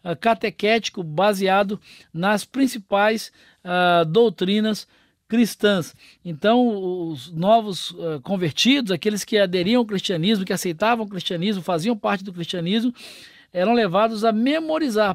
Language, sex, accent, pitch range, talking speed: Portuguese, male, Brazilian, 185-235 Hz, 105 wpm